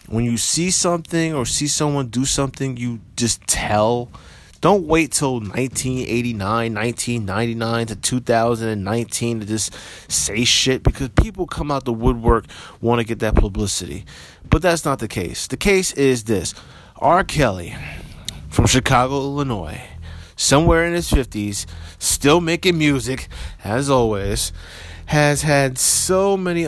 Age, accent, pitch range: 30-49, American, 105-135 Hz